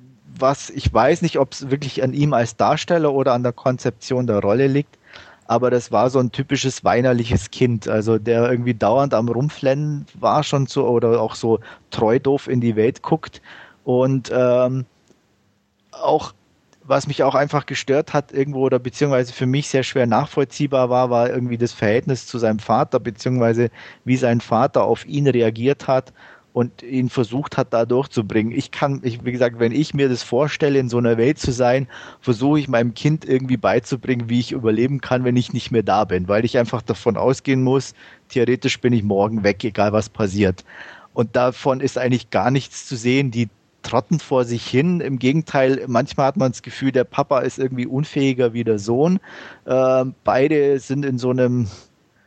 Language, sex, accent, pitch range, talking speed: German, male, German, 120-135 Hz, 185 wpm